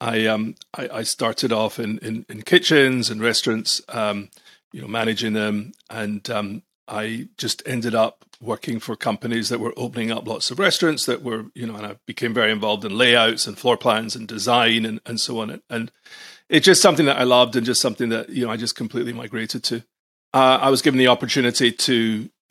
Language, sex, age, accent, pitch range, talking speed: English, male, 40-59, British, 110-130 Hz, 210 wpm